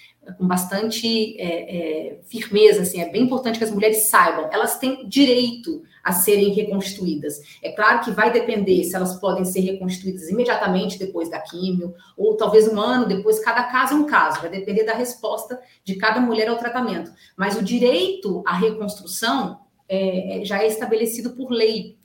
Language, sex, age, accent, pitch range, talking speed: Portuguese, female, 40-59, Brazilian, 185-235 Hz, 170 wpm